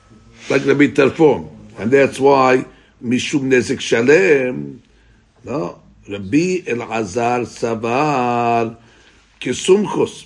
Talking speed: 90 wpm